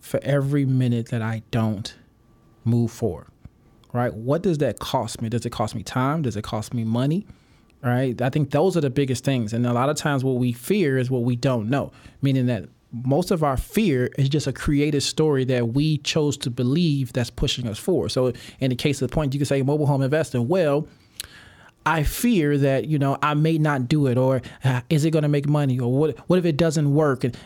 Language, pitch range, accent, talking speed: English, 125-155 Hz, American, 230 wpm